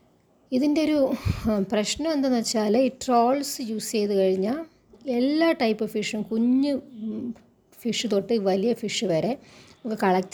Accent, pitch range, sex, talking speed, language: native, 195-245 Hz, female, 100 wpm, Malayalam